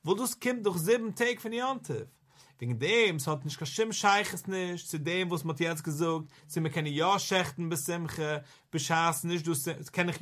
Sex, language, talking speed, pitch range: male, English, 175 wpm, 145-195 Hz